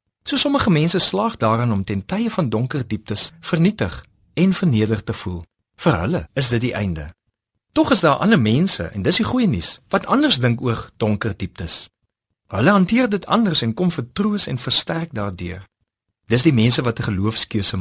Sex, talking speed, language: male, 180 wpm, Dutch